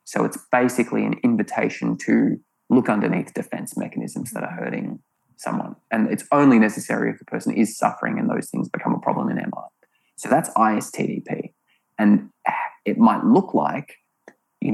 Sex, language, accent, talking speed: male, English, Australian, 165 wpm